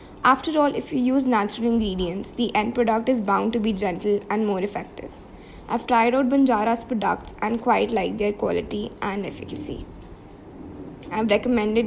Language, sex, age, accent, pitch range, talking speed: English, female, 20-39, Indian, 210-240 Hz, 160 wpm